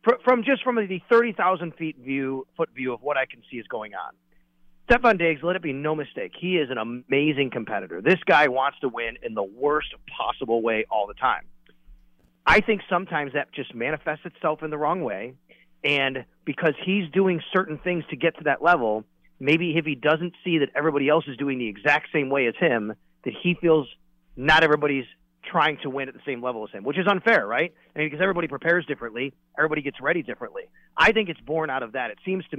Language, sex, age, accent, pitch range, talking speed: English, male, 30-49, American, 125-165 Hz, 215 wpm